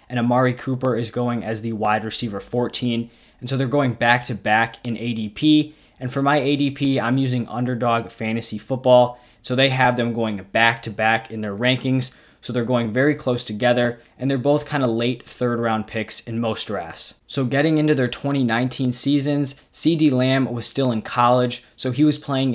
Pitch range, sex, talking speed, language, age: 115-130 Hz, male, 195 wpm, English, 20-39